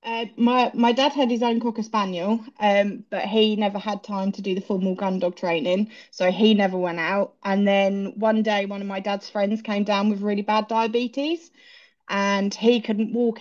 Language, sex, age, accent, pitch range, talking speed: English, female, 20-39, British, 190-225 Hz, 205 wpm